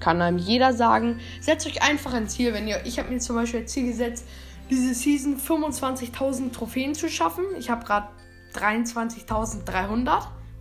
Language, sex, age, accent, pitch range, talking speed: German, female, 10-29, German, 195-255 Hz, 165 wpm